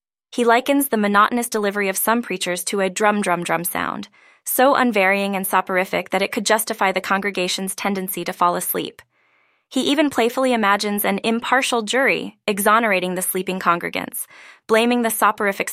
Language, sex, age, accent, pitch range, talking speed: English, female, 20-39, American, 185-230 Hz, 155 wpm